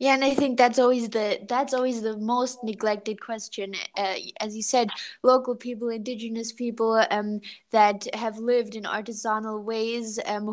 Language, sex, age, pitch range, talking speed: English, female, 20-39, 210-240 Hz, 165 wpm